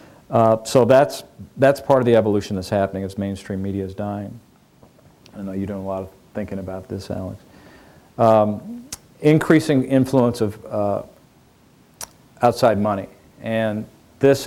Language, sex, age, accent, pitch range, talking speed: English, male, 50-69, American, 100-120 Hz, 145 wpm